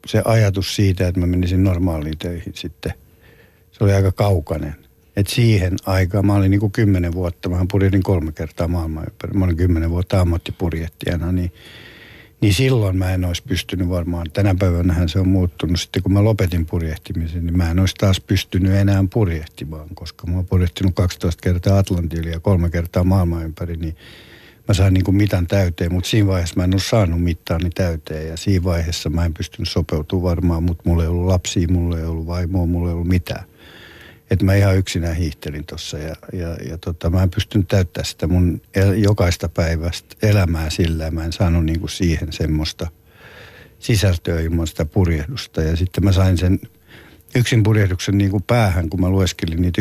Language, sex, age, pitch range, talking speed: Finnish, male, 60-79, 85-100 Hz, 180 wpm